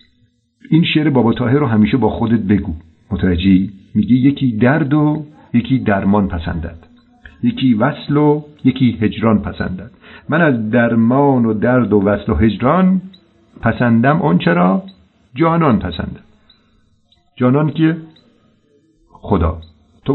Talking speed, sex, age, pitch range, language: 120 wpm, male, 50-69, 100-140 Hz, Persian